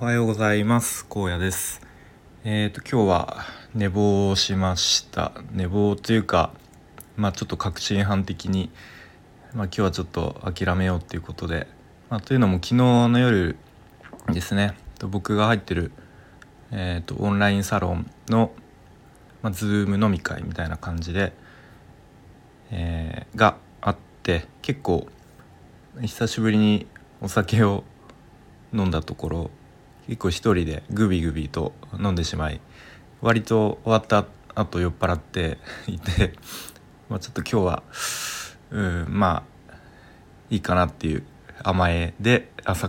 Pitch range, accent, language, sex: 85-105 Hz, native, Japanese, male